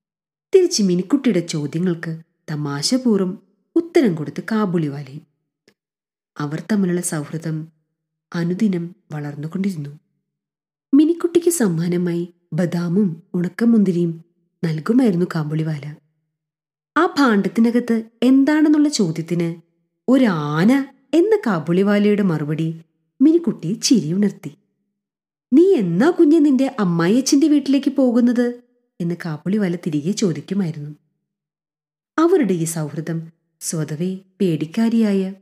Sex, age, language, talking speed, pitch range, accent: female, 30-49, Malayalam, 75 wpm, 160-220 Hz, native